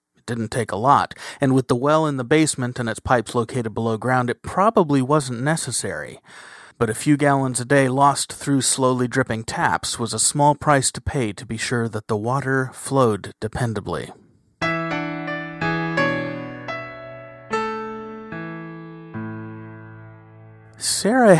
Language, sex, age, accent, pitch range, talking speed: English, male, 30-49, American, 110-150 Hz, 130 wpm